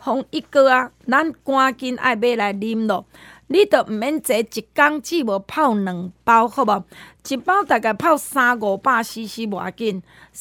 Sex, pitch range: female, 220-295 Hz